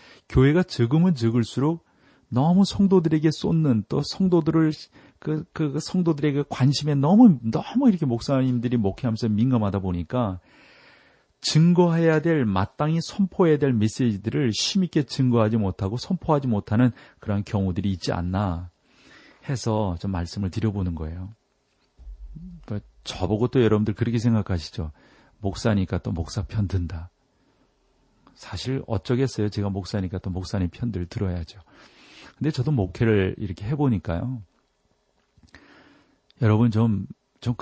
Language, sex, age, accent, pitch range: Korean, male, 40-59, native, 95-140 Hz